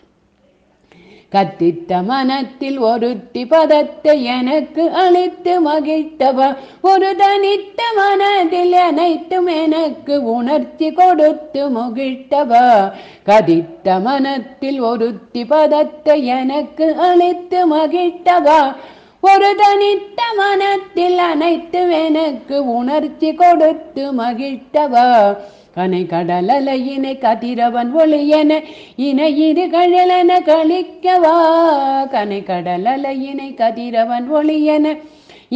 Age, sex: 50-69, female